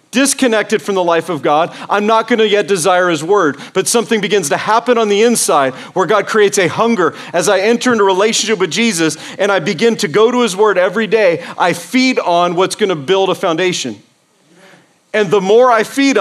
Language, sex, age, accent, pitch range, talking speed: English, male, 40-59, American, 160-215 Hz, 220 wpm